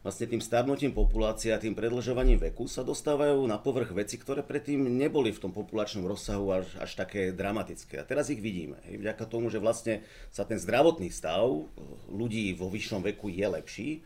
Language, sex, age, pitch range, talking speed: Slovak, male, 40-59, 95-120 Hz, 185 wpm